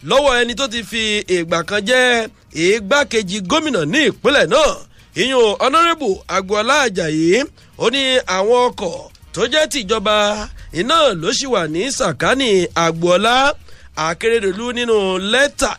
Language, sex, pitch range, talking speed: English, male, 195-270 Hz, 135 wpm